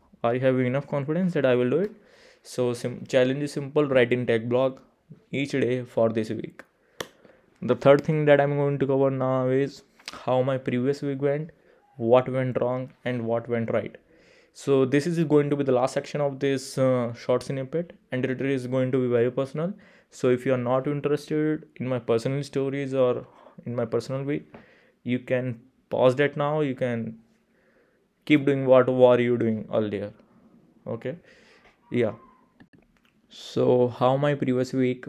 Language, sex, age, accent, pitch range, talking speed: English, male, 20-39, Indian, 120-140 Hz, 180 wpm